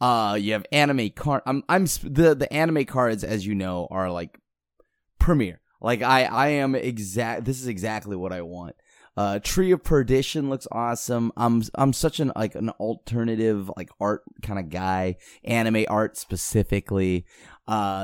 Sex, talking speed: male, 170 wpm